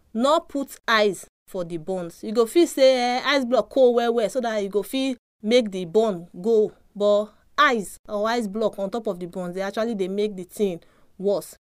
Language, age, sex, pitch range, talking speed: English, 30-49, female, 200-240 Hz, 210 wpm